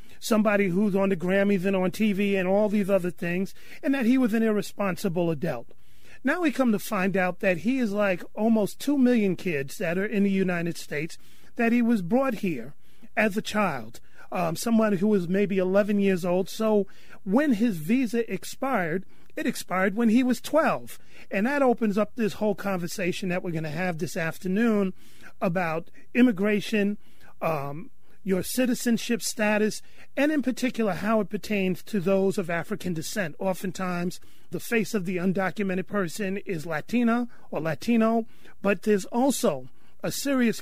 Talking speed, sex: 170 wpm, male